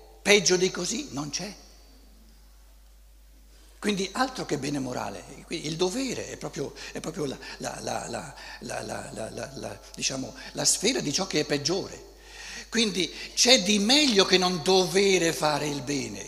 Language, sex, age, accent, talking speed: Italian, male, 60-79, native, 115 wpm